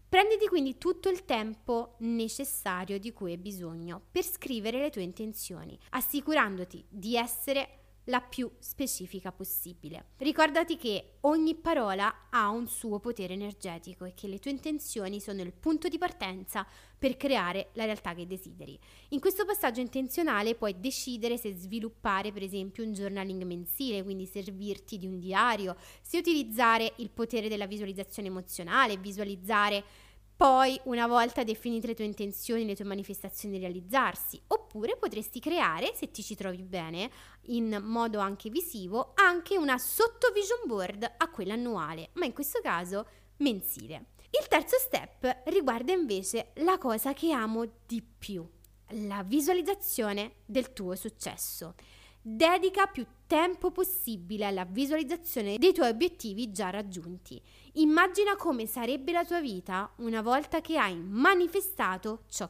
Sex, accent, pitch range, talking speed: female, native, 200-290 Hz, 140 wpm